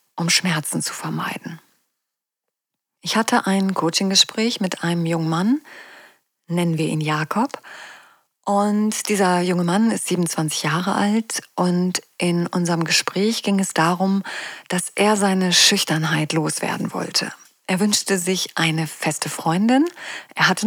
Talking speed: 130 wpm